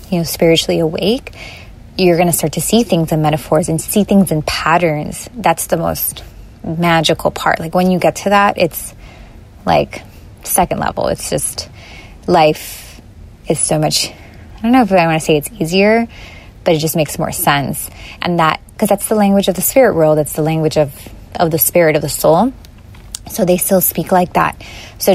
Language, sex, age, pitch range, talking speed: English, female, 20-39, 160-190 Hz, 195 wpm